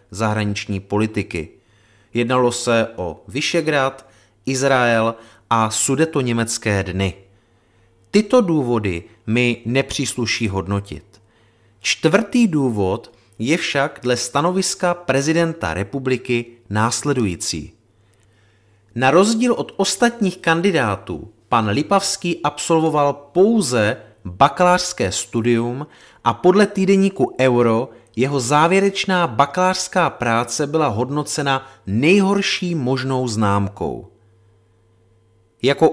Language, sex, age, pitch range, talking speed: Czech, male, 30-49, 110-165 Hz, 80 wpm